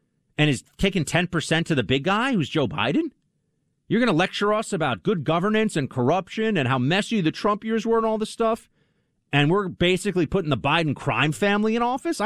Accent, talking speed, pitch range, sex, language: American, 210 wpm, 115-170 Hz, male, English